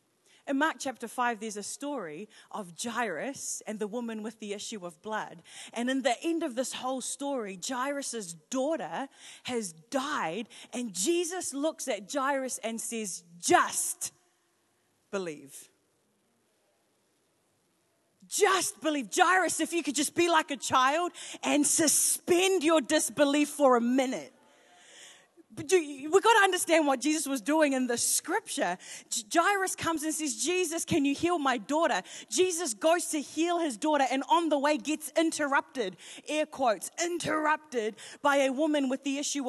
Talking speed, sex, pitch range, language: 150 wpm, female, 245-320 Hz, English